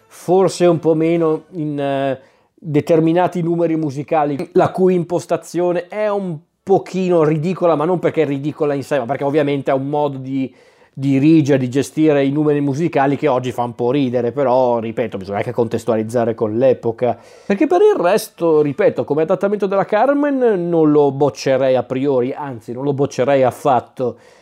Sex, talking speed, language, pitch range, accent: male, 165 wpm, Italian, 130-170 Hz, native